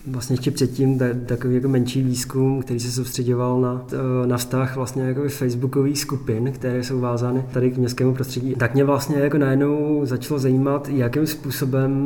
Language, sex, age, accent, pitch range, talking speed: Czech, male, 20-39, native, 125-140 Hz, 160 wpm